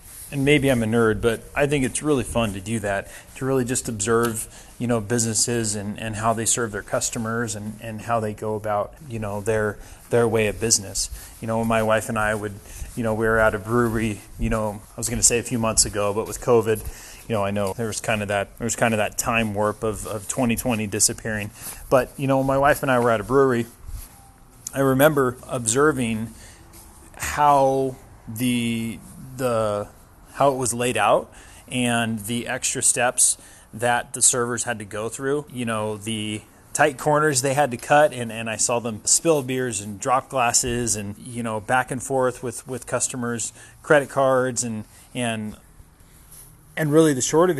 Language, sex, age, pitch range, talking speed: English, male, 30-49, 110-130 Hz, 205 wpm